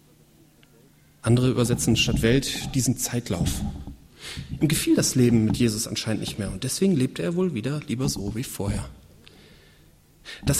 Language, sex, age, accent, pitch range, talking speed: German, male, 40-59, German, 130-190 Hz, 145 wpm